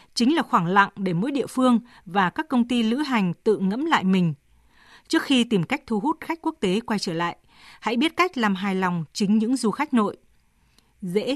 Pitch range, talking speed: 185-250 Hz, 220 wpm